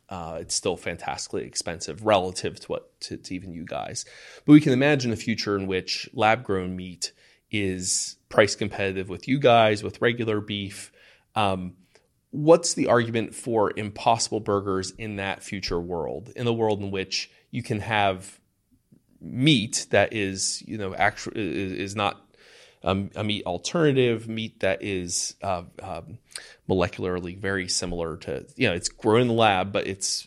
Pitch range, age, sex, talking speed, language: 95-115 Hz, 30-49, male, 160 wpm, English